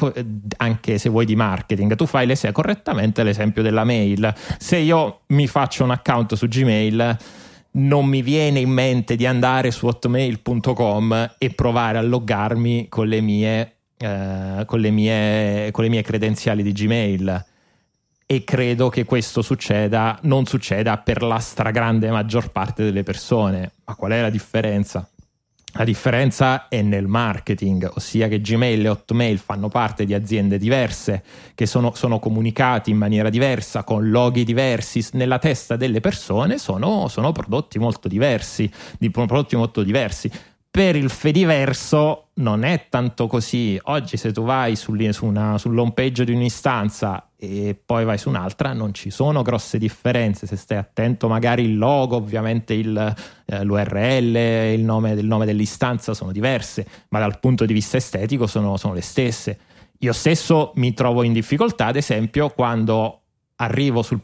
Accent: native